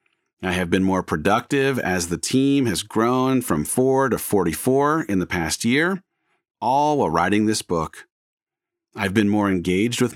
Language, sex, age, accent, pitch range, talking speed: English, male, 40-59, American, 95-135 Hz, 165 wpm